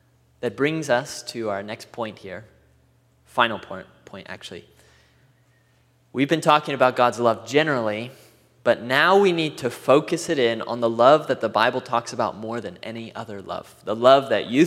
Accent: American